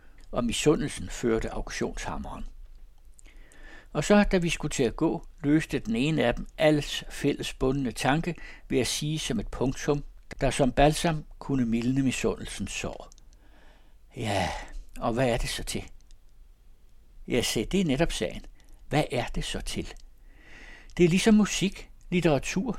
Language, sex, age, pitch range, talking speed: Danish, male, 60-79, 130-165 Hz, 150 wpm